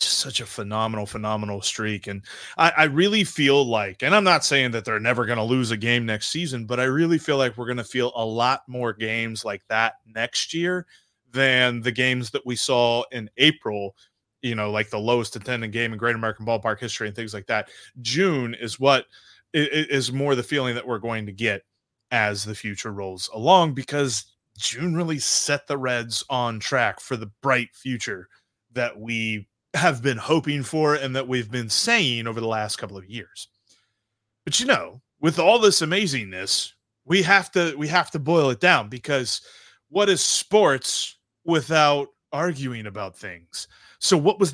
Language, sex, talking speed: English, male, 190 wpm